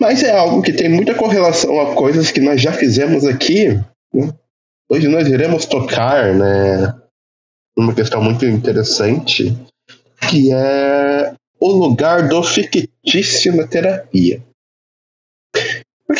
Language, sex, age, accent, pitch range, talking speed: Portuguese, male, 20-39, Brazilian, 115-145 Hz, 120 wpm